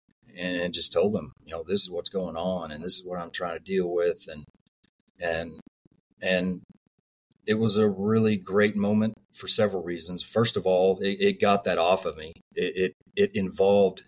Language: English